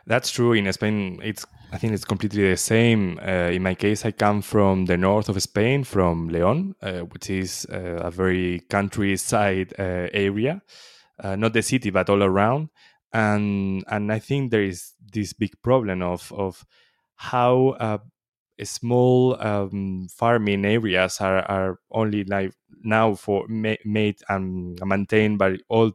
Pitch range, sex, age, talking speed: 95-115 Hz, male, 20-39, 160 wpm